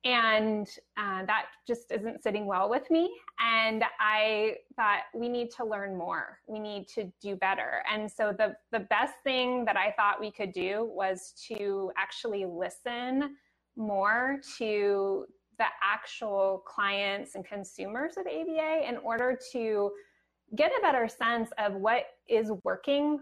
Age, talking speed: 20-39, 150 wpm